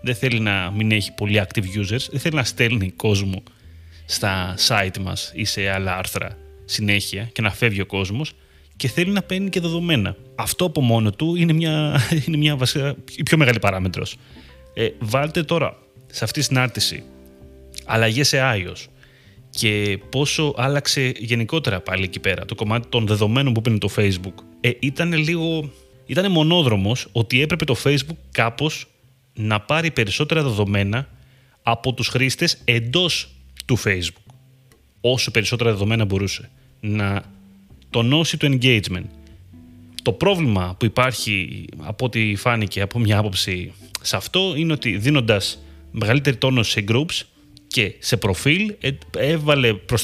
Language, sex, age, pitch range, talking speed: Greek, male, 30-49, 100-140 Hz, 145 wpm